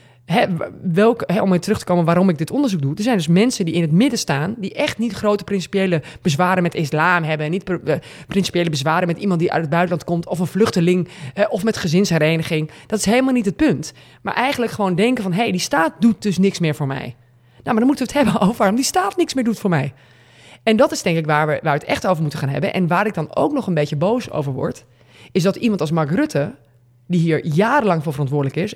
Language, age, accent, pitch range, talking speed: Dutch, 20-39, Dutch, 150-210 Hz, 260 wpm